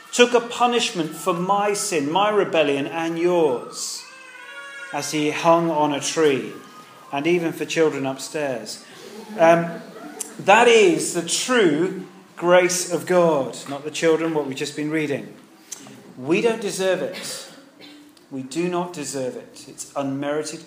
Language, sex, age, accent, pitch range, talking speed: English, male, 40-59, British, 150-210 Hz, 140 wpm